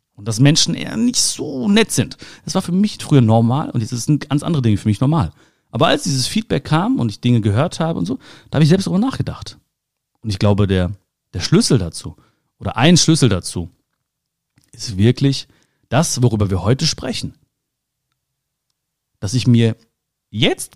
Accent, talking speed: German, 185 wpm